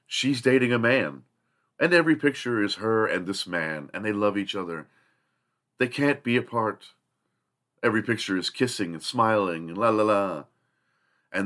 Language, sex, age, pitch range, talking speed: English, male, 40-59, 100-145 Hz, 170 wpm